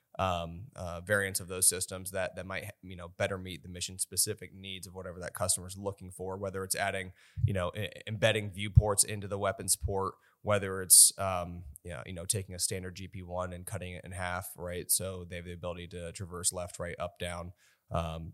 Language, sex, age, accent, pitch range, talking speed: English, male, 20-39, American, 85-100 Hz, 215 wpm